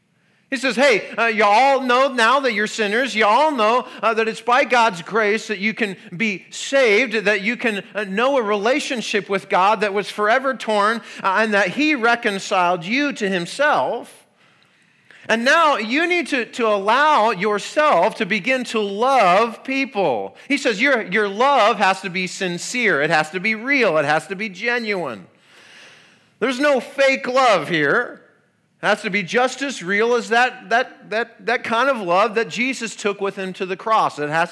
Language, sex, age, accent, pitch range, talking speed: English, male, 40-59, American, 200-255 Hz, 190 wpm